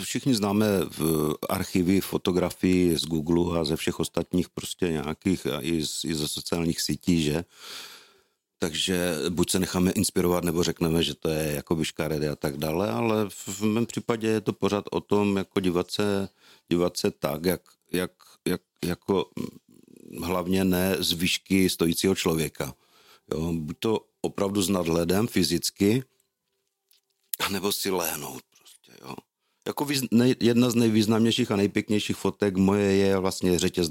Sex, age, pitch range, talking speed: male, 50-69, 85-100 Hz, 150 wpm